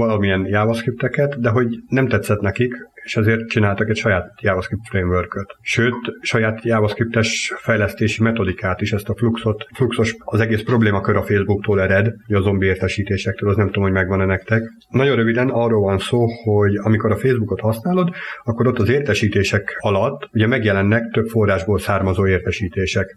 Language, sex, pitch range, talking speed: Hungarian, male, 100-120 Hz, 155 wpm